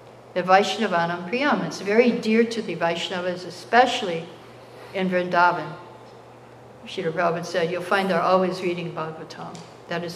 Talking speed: 135 wpm